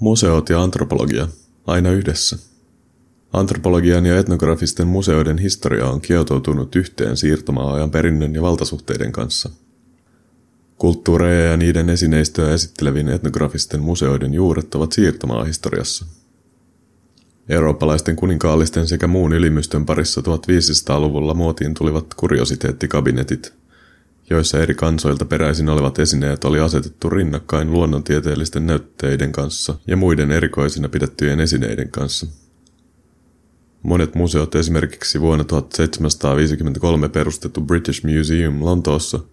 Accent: native